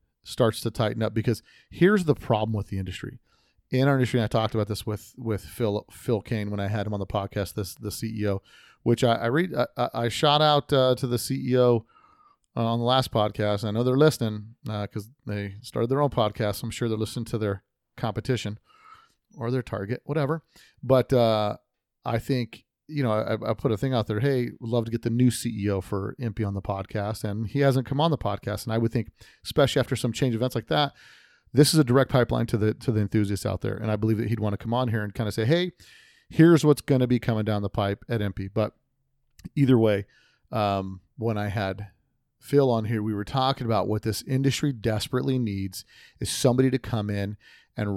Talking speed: 225 wpm